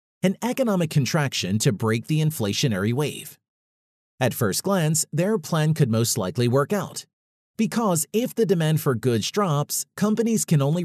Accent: American